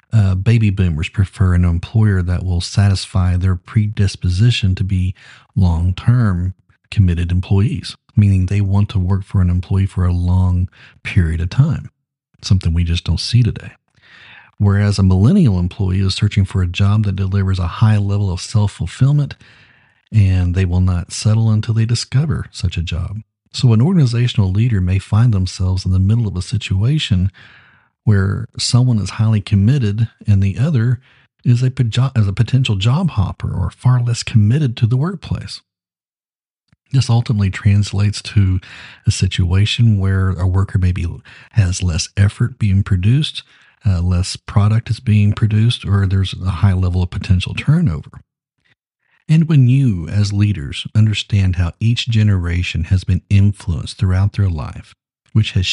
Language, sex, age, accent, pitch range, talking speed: English, male, 40-59, American, 95-115 Hz, 155 wpm